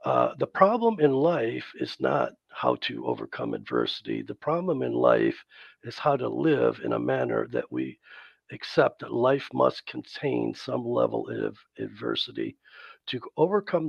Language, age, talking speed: English, 50-69, 150 wpm